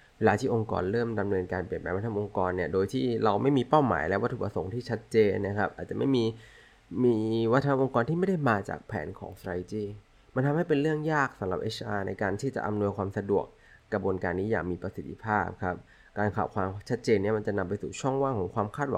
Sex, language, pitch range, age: male, Thai, 100-125 Hz, 20-39